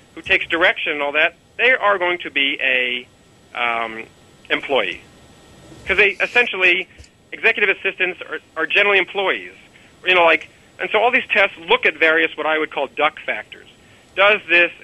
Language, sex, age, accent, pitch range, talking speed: English, male, 40-59, American, 145-185 Hz, 170 wpm